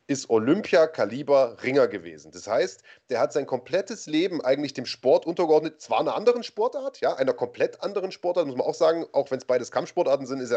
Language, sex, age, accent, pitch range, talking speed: German, male, 30-49, German, 140-205 Hz, 200 wpm